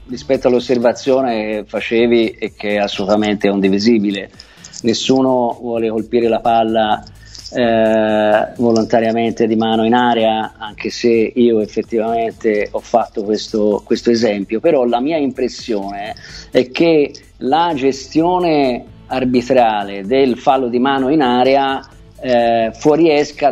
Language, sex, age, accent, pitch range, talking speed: Italian, male, 50-69, native, 115-145 Hz, 115 wpm